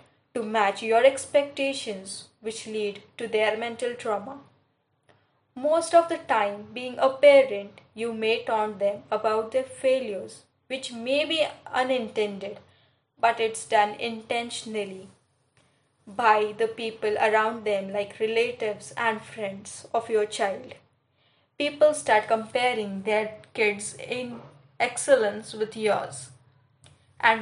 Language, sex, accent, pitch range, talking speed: Hindi, female, native, 205-245 Hz, 120 wpm